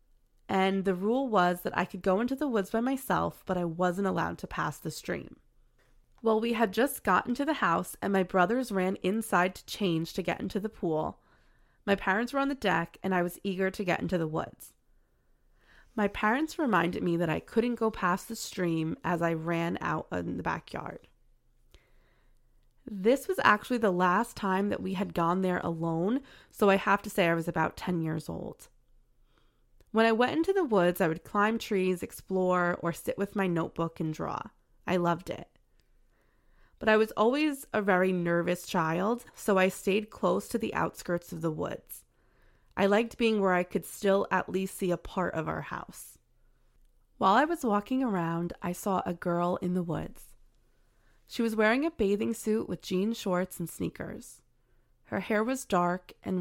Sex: female